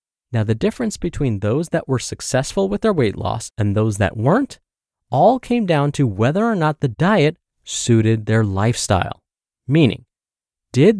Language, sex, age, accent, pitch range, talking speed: English, male, 20-39, American, 110-150 Hz, 165 wpm